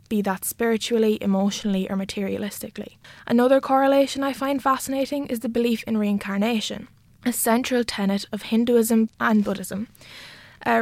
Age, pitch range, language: 20-39, 200-235 Hz, English